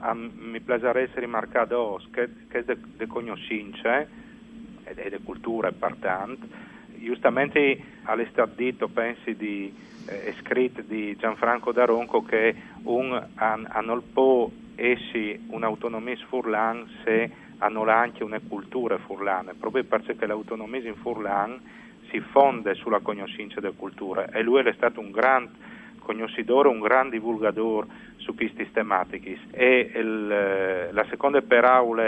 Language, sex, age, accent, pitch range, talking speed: Italian, male, 40-59, native, 110-125 Hz, 120 wpm